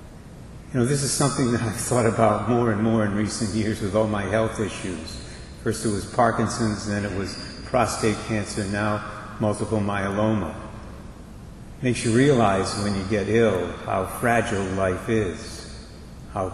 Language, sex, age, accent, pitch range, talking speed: English, male, 70-89, American, 105-120 Hz, 165 wpm